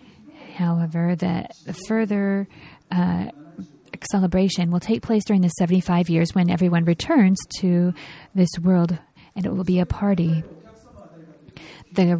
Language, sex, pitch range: Japanese, female, 170-195 Hz